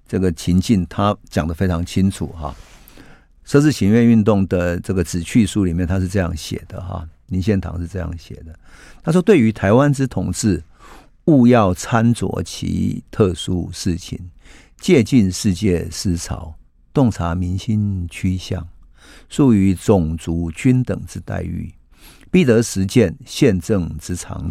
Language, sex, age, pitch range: Chinese, male, 50-69, 85-110 Hz